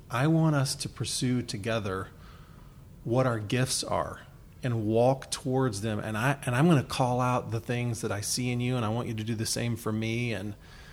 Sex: male